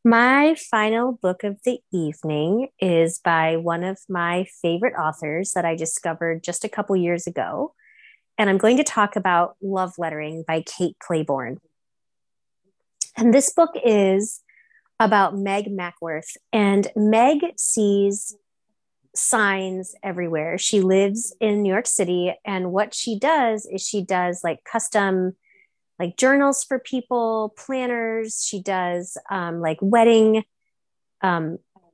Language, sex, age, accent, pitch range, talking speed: English, female, 30-49, American, 175-225 Hz, 130 wpm